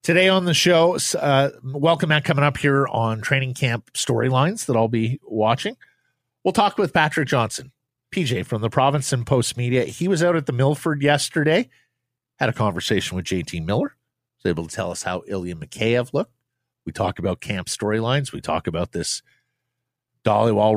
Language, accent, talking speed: English, American, 180 wpm